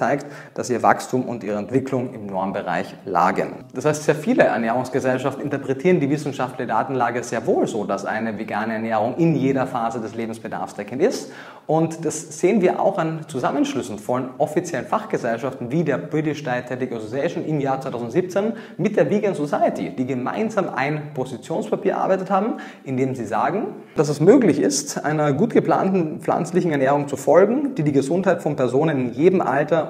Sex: male